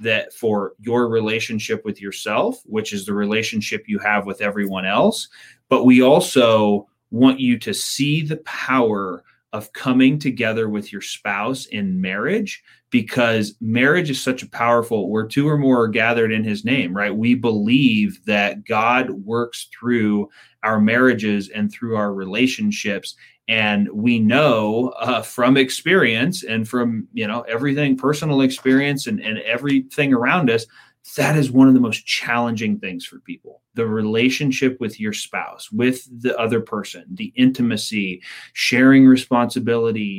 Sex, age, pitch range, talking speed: male, 30-49, 110-145 Hz, 150 wpm